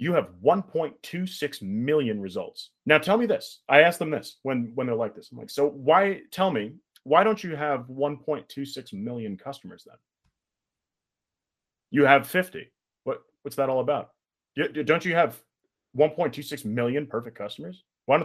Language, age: English, 30-49